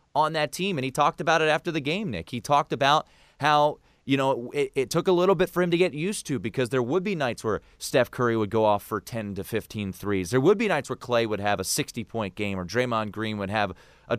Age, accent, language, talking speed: 30-49, American, English, 270 wpm